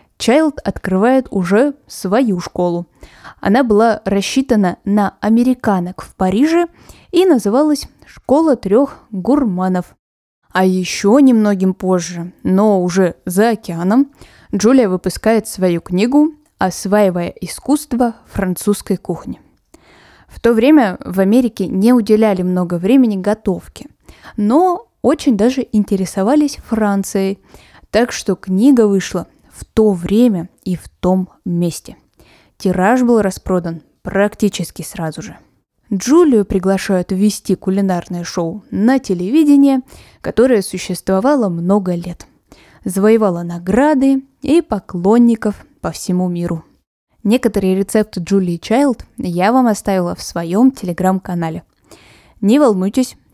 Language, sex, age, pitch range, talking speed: Russian, female, 10-29, 185-245 Hz, 105 wpm